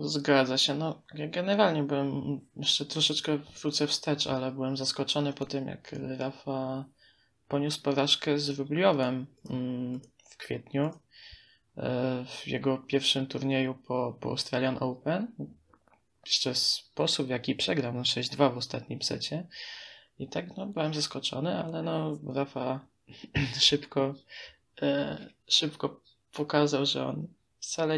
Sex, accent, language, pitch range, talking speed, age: male, native, Polish, 135-150 Hz, 115 wpm, 20-39